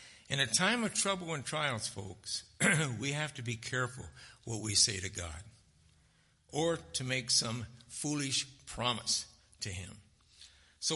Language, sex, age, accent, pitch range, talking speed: English, male, 60-79, American, 115-165 Hz, 150 wpm